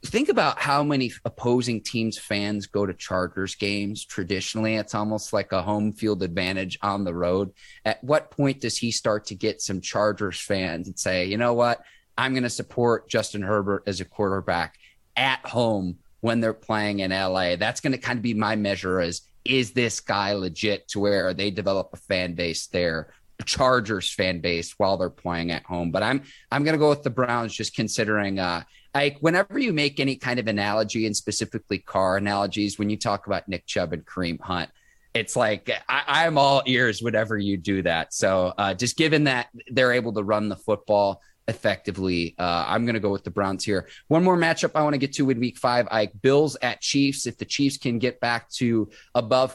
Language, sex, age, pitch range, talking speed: English, male, 30-49, 100-125 Hz, 205 wpm